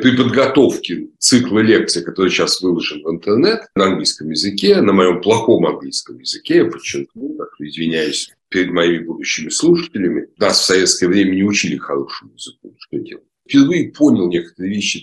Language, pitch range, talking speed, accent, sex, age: Russian, 90-145 Hz, 160 wpm, native, male, 60-79